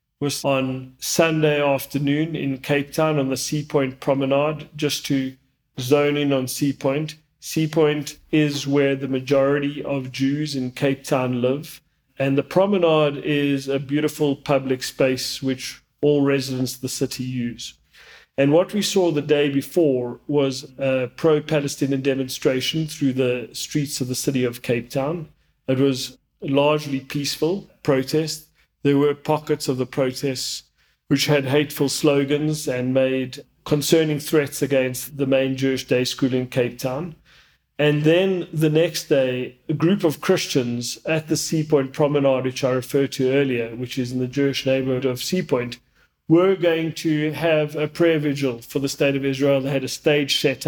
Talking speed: 160 wpm